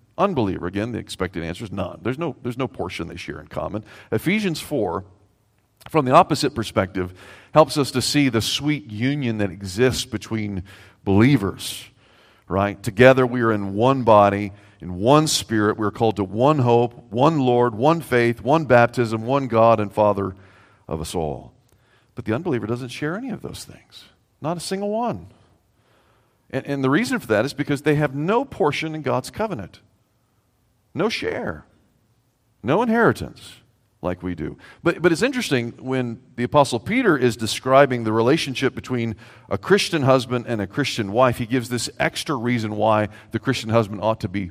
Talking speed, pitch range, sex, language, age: 175 wpm, 105-130 Hz, male, English, 40-59